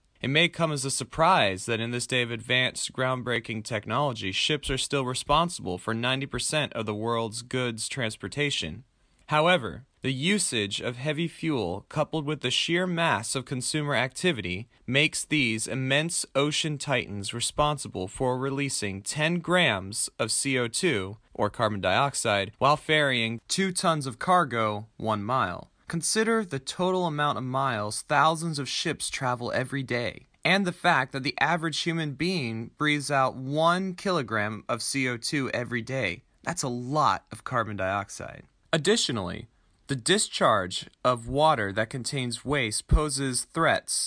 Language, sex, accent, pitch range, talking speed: English, male, American, 115-155 Hz, 145 wpm